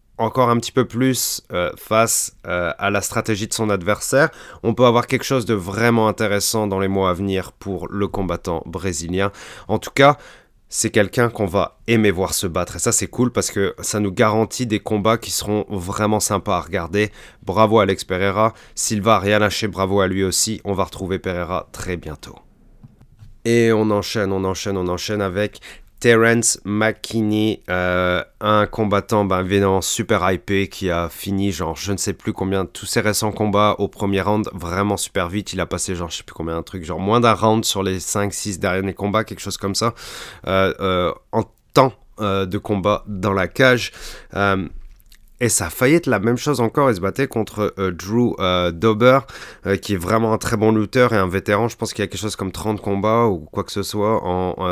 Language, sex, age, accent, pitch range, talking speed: French, male, 30-49, French, 95-110 Hz, 210 wpm